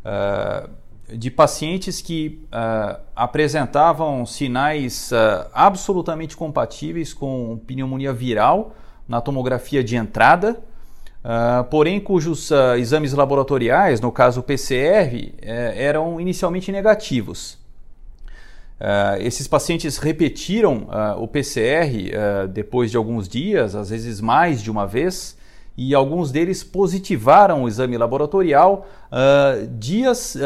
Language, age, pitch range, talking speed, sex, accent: Portuguese, 40-59, 115-165 Hz, 95 wpm, male, Brazilian